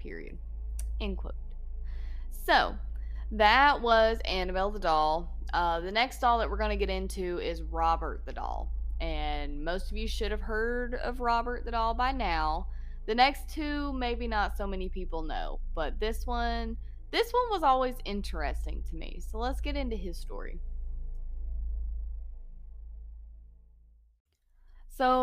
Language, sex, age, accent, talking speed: English, female, 20-39, American, 145 wpm